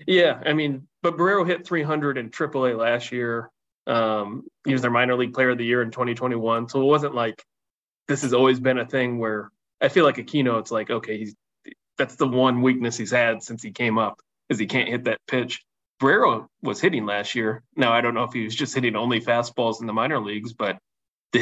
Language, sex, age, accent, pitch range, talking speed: English, male, 20-39, American, 115-130 Hz, 225 wpm